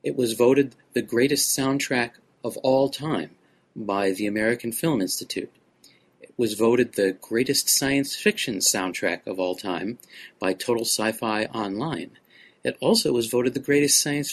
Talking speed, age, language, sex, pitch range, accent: 150 wpm, 40-59, English, male, 115-135 Hz, American